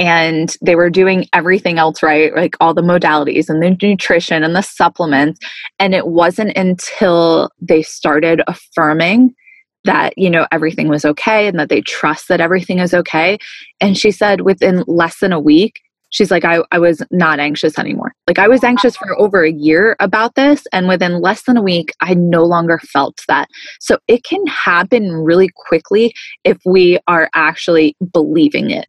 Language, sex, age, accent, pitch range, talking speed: English, female, 20-39, American, 165-210 Hz, 180 wpm